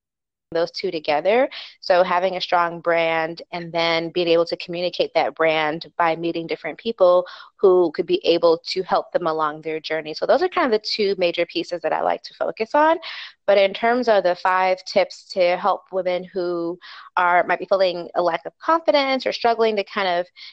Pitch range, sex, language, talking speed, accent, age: 175-230 Hz, female, English, 200 wpm, American, 20-39